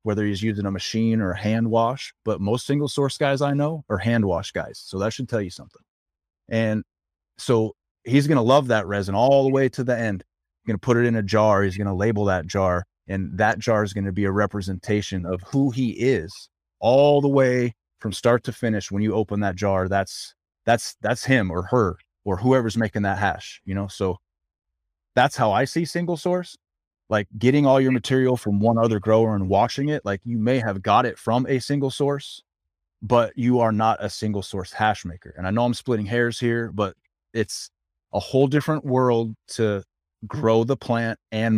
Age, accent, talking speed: 30-49, American, 215 wpm